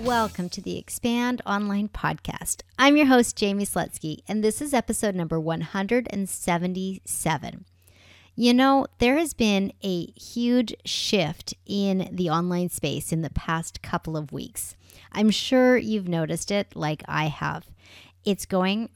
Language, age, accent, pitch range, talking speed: English, 40-59, American, 155-220 Hz, 140 wpm